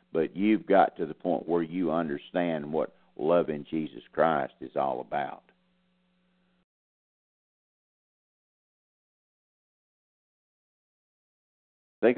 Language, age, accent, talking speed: English, 60-79, American, 90 wpm